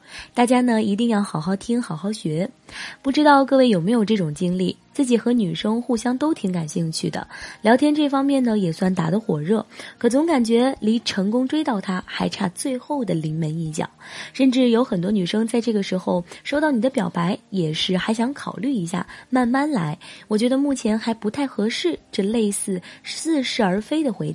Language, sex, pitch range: Chinese, female, 180-250 Hz